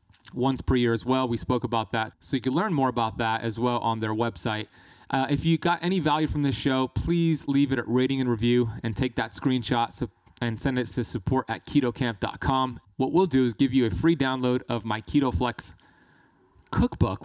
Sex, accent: male, American